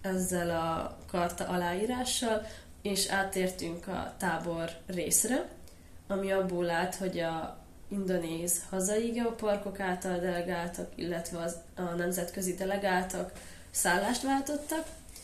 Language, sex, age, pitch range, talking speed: Hungarian, female, 20-39, 170-195 Hz, 100 wpm